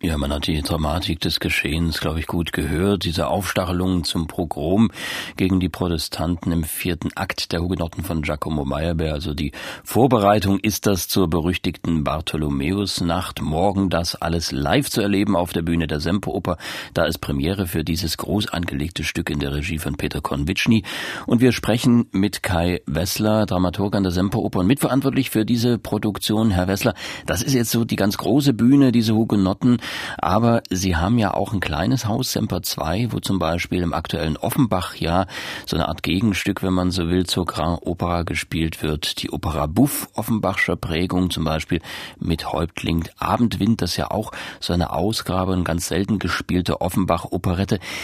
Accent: German